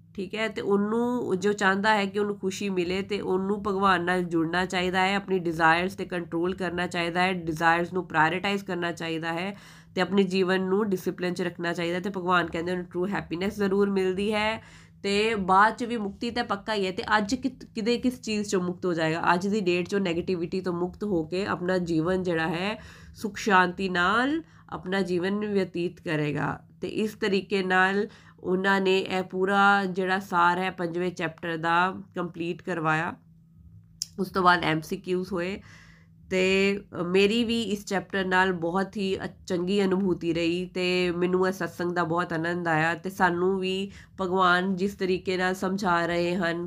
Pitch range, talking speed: 170-195 Hz, 165 wpm